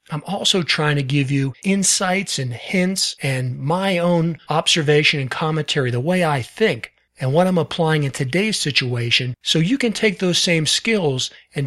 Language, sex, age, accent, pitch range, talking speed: English, male, 40-59, American, 135-165 Hz, 175 wpm